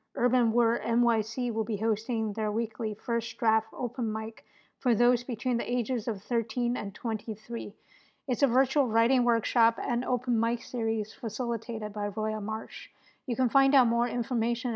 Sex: female